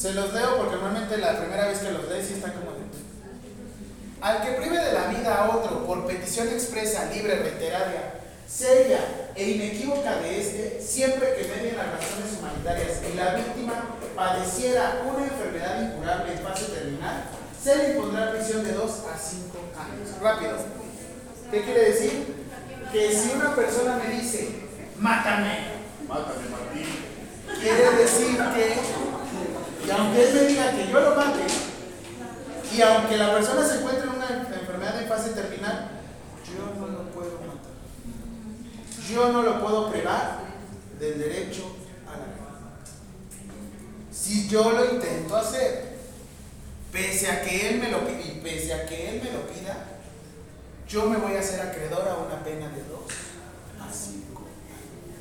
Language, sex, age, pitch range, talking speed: Spanish, male, 40-59, 185-240 Hz, 150 wpm